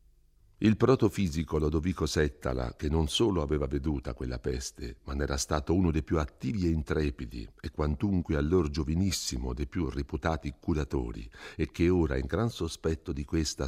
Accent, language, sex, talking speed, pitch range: native, Italian, male, 160 wpm, 70-95 Hz